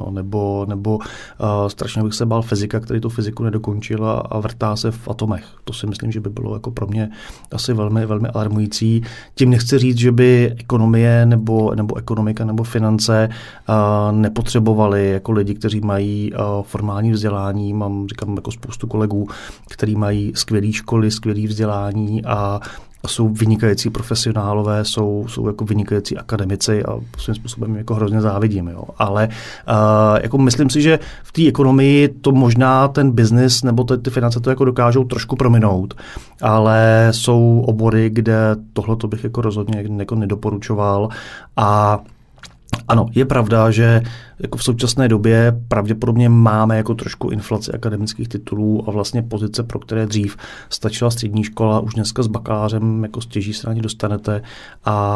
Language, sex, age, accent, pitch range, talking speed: Czech, male, 30-49, native, 105-115 Hz, 160 wpm